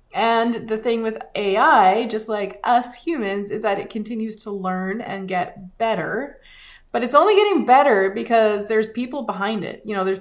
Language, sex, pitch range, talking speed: English, female, 190-220 Hz, 180 wpm